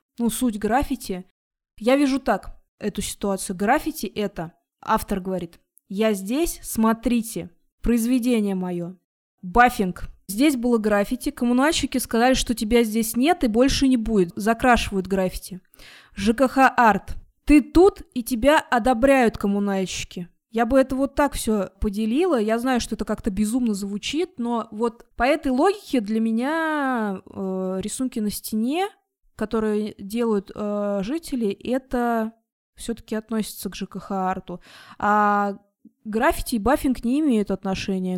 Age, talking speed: 20-39, 130 wpm